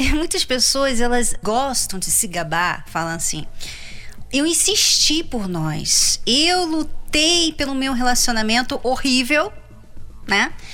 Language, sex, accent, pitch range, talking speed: Portuguese, female, Brazilian, 200-315 Hz, 110 wpm